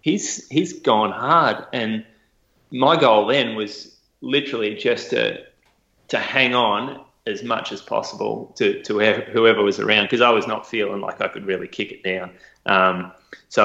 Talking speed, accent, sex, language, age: 170 wpm, Australian, male, English, 20-39